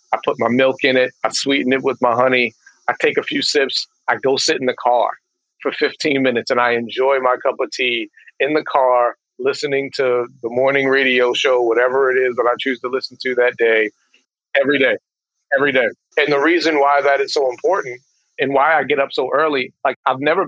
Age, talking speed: 40-59, 220 wpm